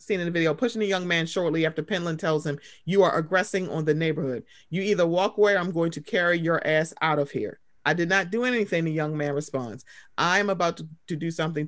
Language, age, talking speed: English, 30-49, 245 wpm